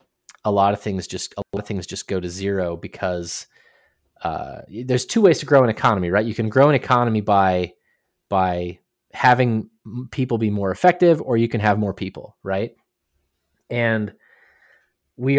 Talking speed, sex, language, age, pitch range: 170 wpm, male, English, 30-49, 95-125 Hz